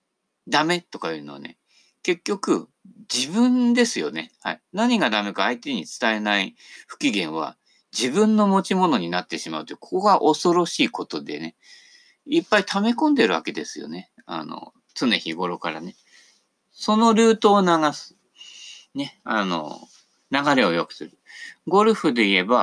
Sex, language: male, Japanese